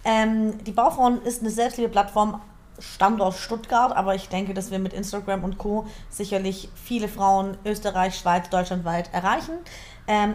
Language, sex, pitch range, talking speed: German, female, 190-230 Hz, 155 wpm